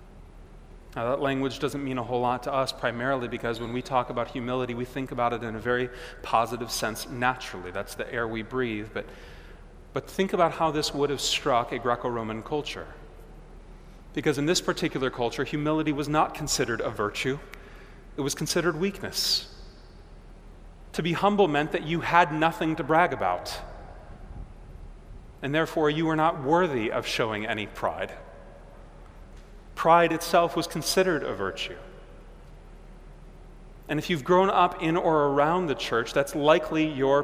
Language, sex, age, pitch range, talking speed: English, male, 30-49, 115-155 Hz, 160 wpm